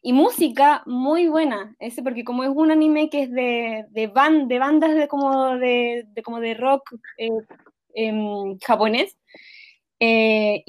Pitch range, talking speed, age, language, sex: 240-305 Hz, 145 wpm, 20-39, Spanish, female